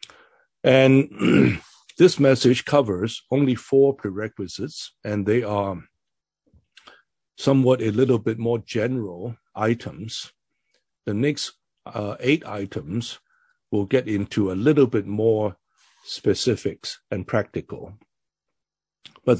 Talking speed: 100 wpm